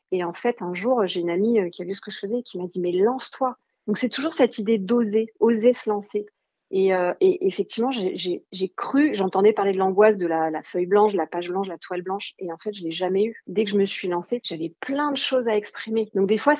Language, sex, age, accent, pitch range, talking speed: French, female, 40-59, French, 185-230 Hz, 280 wpm